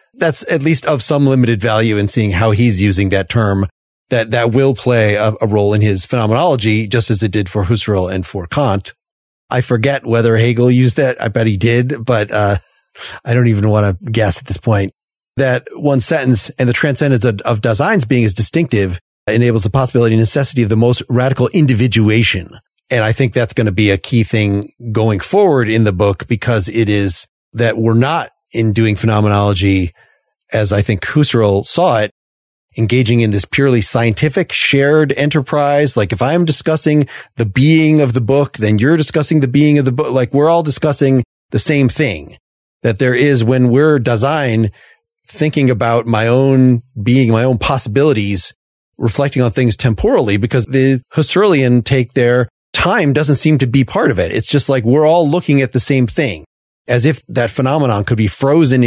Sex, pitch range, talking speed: male, 110-140 Hz, 190 wpm